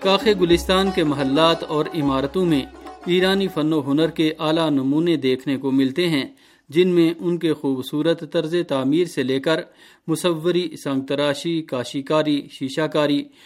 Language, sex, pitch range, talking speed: Urdu, male, 140-175 Hz, 145 wpm